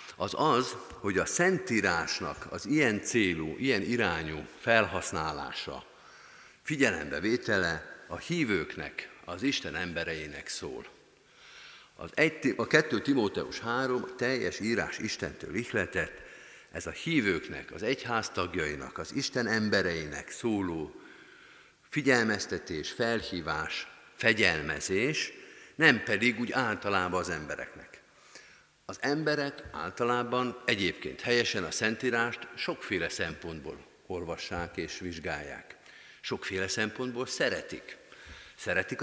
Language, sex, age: Hungarian, male, 50-69